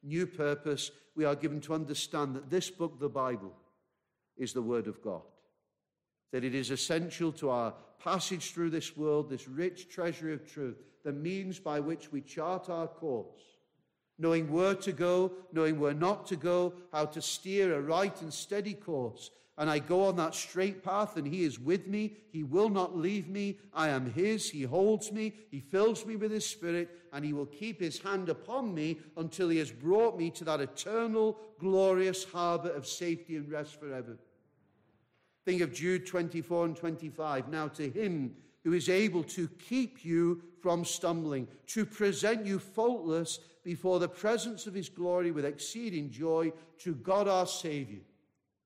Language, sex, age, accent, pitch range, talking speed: English, male, 50-69, British, 150-190 Hz, 175 wpm